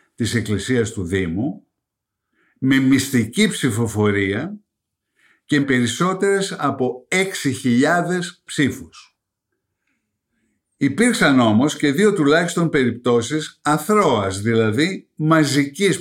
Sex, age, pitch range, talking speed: male, 60-79, 115-160 Hz, 80 wpm